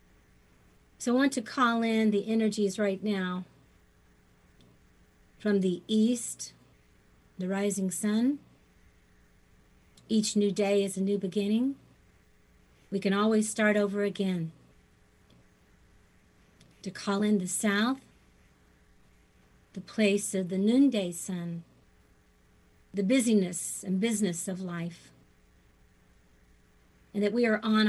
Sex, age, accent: female, 50-69, American